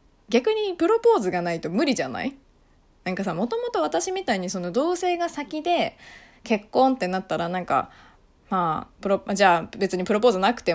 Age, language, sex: 20-39, Japanese, female